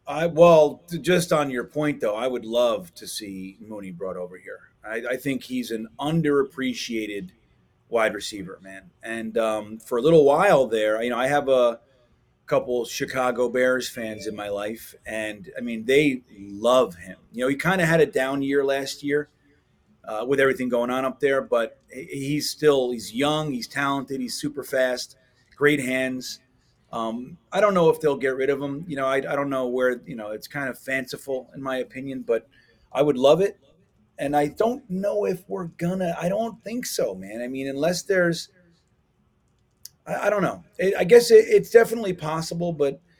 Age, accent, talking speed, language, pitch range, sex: 30-49, American, 195 wpm, English, 120-150 Hz, male